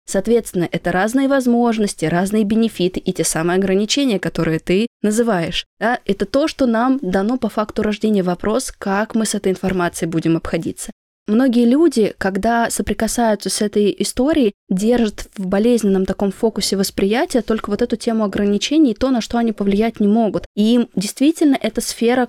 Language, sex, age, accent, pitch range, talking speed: Russian, female, 20-39, native, 190-235 Hz, 160 wpm